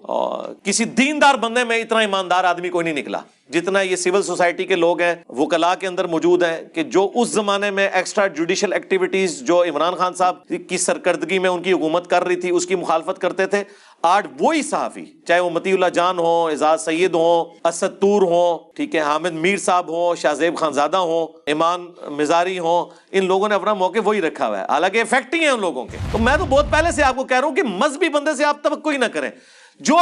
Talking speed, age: 195 wpm, 40-59